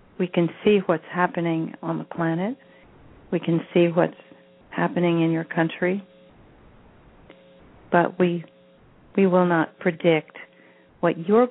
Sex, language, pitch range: female, English, 155-185 Hz